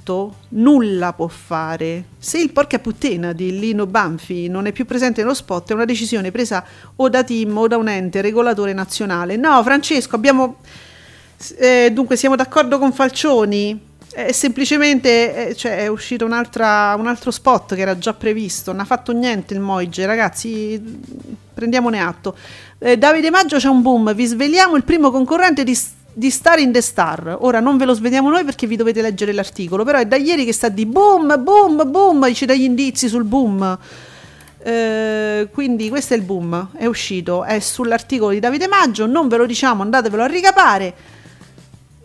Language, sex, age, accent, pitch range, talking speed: Italian, female, 40-59, native, 215-275 Hz, 180 wpm